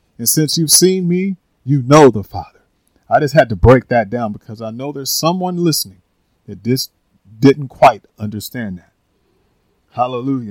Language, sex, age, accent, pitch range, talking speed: English, male, 40-59, American, 110-150 Hz, 165 wpm